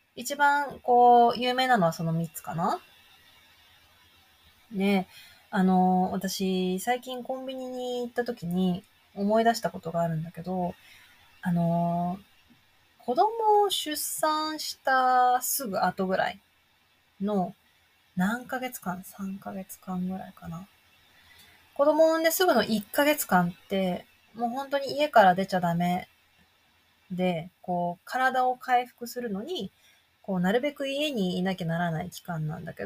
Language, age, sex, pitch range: Japanese, 20-39, female, 180-255 Hz